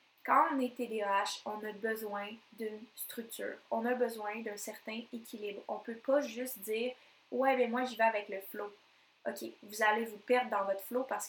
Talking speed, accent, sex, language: 220 wpm, Canadian, female, French